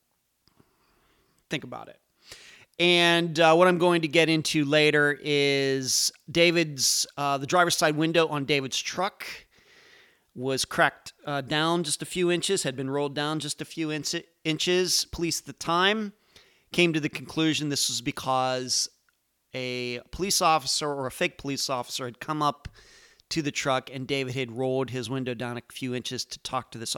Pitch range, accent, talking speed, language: 130-160 Hz, American, 170 wpm, English